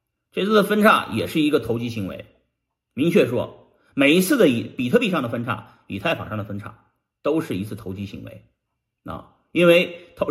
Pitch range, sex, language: 120-205 Hz, male, Chinese